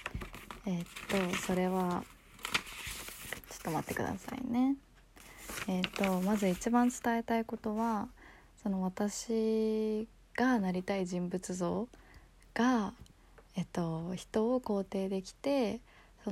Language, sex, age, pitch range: Japanese, female, 20-39, 180-215 Hz